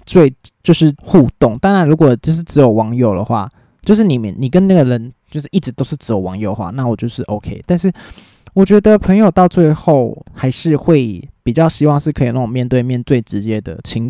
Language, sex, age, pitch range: Chinese, male, 20-39, 115-155 Hz